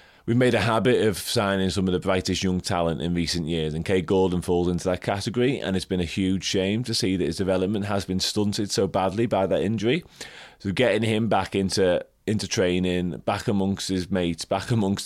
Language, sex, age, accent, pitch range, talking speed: English, male, 30-49, British, 85-100 Hz, 215 wpm